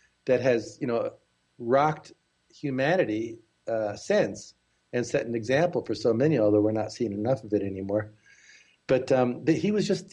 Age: 50-69